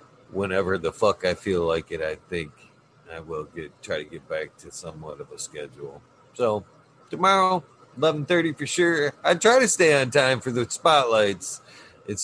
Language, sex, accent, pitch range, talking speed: English, male, American, 100-140 Hz, 180 wpm